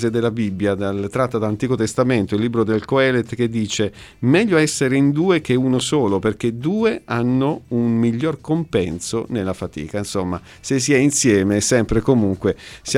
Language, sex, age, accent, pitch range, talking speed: Italian, male, 50-69, native, 105-125 Hz, 160 wpm